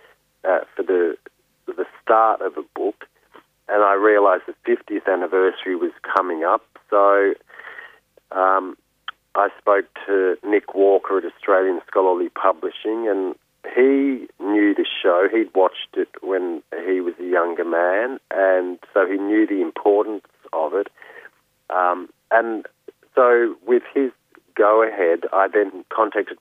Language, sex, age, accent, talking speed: English, male, 40-59, Australian, 135 wpm